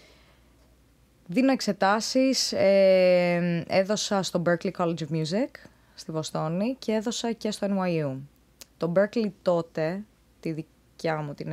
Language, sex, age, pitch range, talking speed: Greek, female, 20-39, 160-205 Hz, 120 wpm